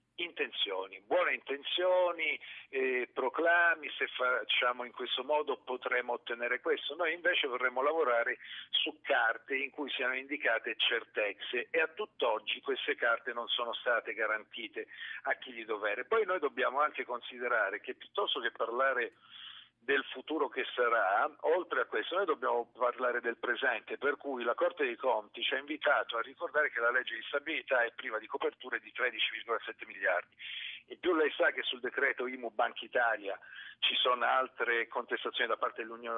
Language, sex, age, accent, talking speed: Italian, male, 50-69, native, 160 wpm